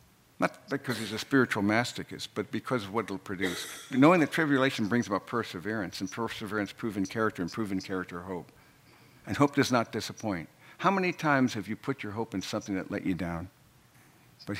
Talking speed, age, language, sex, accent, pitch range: 190 wpm, 60-79, English, male, American, 110-140 Hz